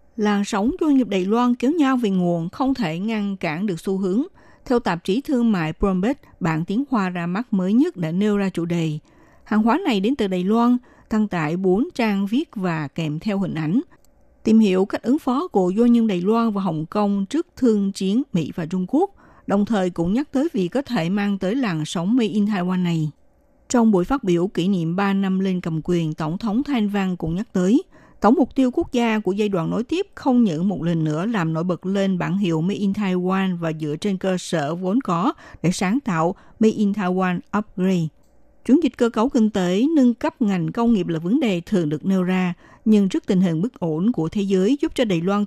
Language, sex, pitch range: Vietnamese, female, 175-230 Hz